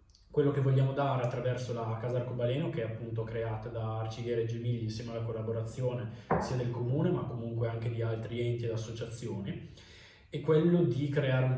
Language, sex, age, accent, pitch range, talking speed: Italian, male, 20-39, native, 115-130 Hz, 180 wpm